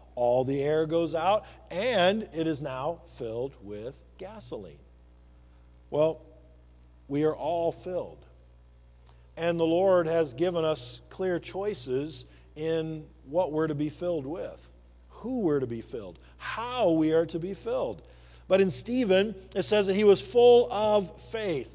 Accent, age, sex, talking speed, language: American, 50-69, male, 150 wpm, English